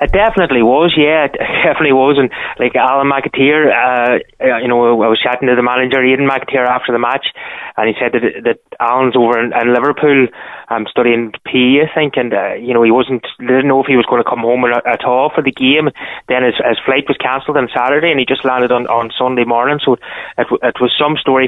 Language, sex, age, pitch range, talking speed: English, male, 20-39, 120-140 Hz, 235 wpm